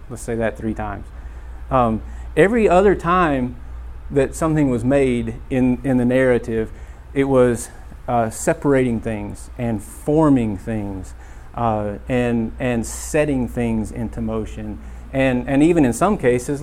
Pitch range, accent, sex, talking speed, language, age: 105-125 Hz, American, male, 135 wpm, English, 40-59